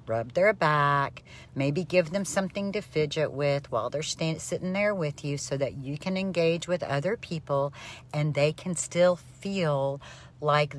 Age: 50-69